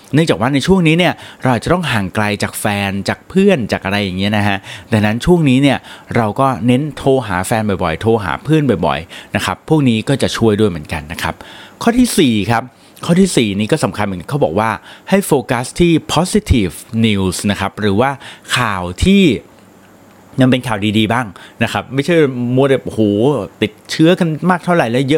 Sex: male